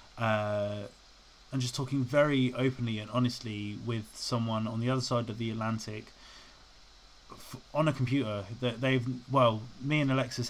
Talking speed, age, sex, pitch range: 155 wpm, 20-39, male, 110-125 Hz